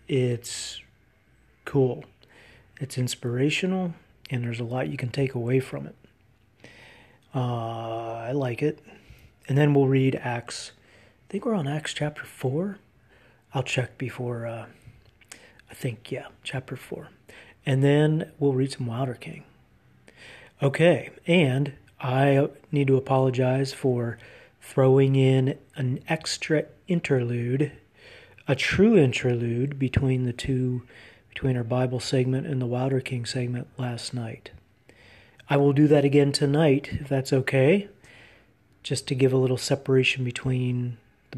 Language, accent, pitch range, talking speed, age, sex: English, American, 120-140 Hz, 135 wpm, 40-59, male